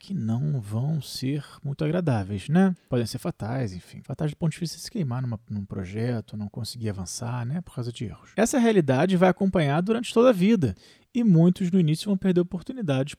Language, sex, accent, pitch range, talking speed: Portuguese, male, Brazilian, 125-175 Hz, 205 wpm